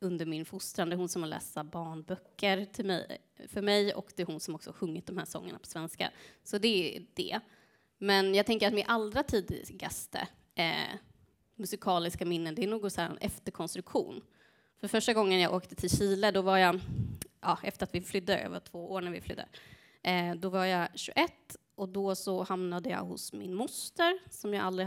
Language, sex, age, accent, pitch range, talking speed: Swedish, female, 20-39, native, 180-215 Hz, 195 wpm